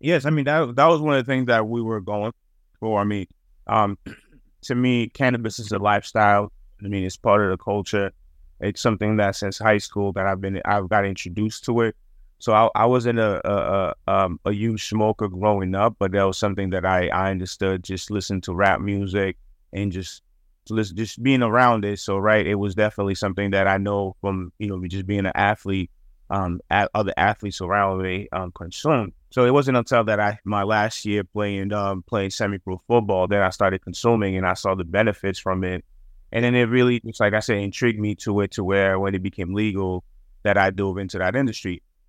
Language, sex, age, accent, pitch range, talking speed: English, male, 20-39, American, 95-110 Hz, 215 wpm